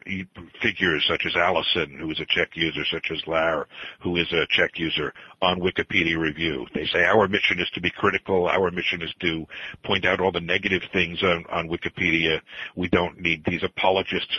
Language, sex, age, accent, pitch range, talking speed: English, male, 50-69, American, 90-105 Hz, 190 wpm